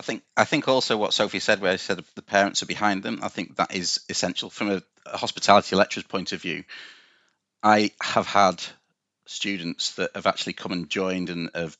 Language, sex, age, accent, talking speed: English, male, 30-49, British, 210 wpm